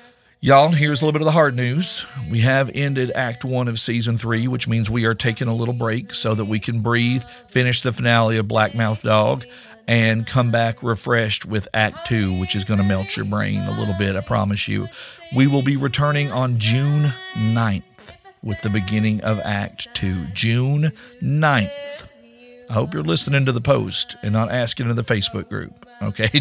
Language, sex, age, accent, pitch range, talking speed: English, male, 50-69, American, 110-135 Hz, 200 wpm